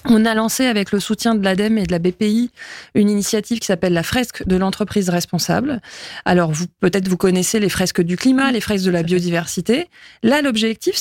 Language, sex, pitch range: French, female, 185-240 Hz